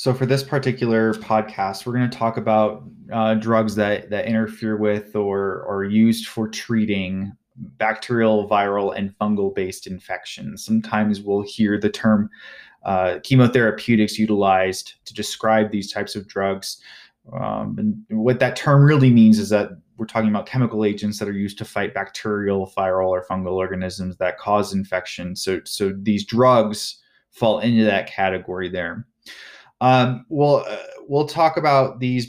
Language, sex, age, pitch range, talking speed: English, male, 20-39, 100-115 Hz, 155 wpm